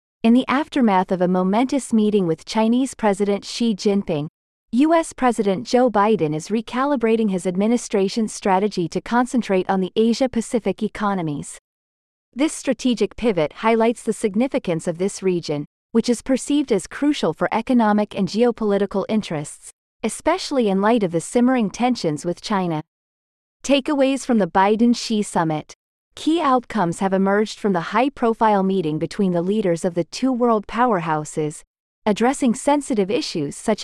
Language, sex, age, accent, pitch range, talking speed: English, female, 30-49, American, 185-245 Hz, 140 wpm